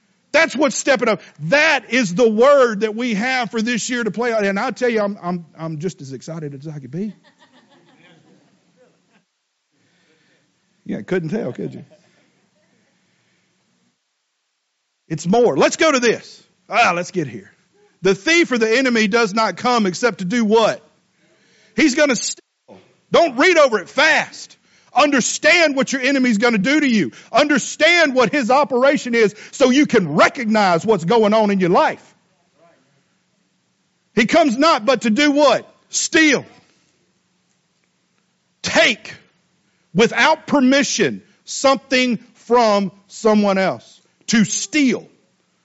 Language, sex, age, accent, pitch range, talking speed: English, male, 50-69, American, 195-275 Hz, 145 wpm